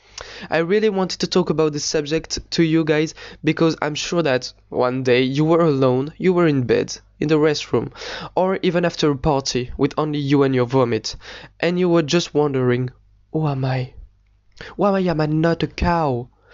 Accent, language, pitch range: French, English, 135-165 Hz